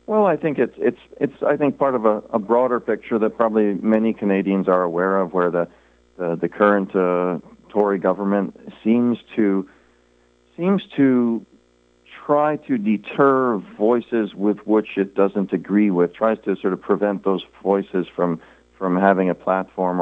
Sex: male